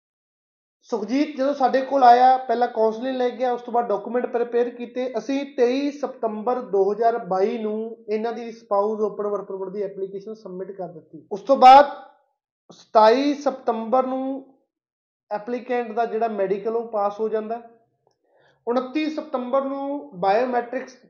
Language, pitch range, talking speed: Punjabi, 210-255 Hz, 135 wpm